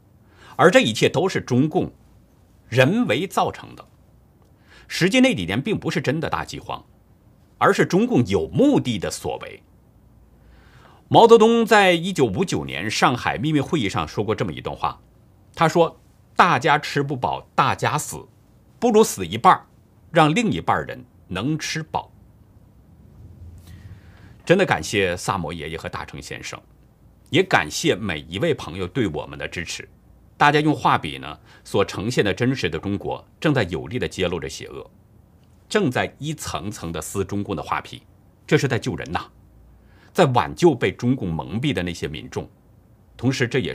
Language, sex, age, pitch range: Chinese, male, 50-69, 95-150 Hz